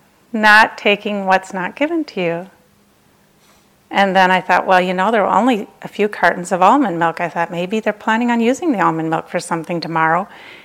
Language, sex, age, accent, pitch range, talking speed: English, female, 40-59, American, 175-230 Hz, 205 wpm